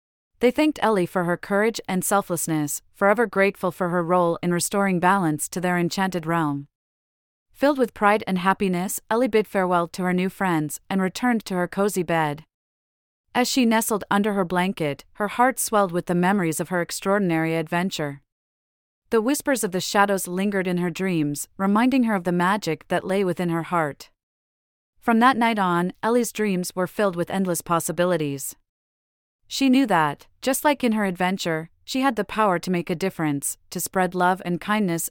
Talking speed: 180 wpm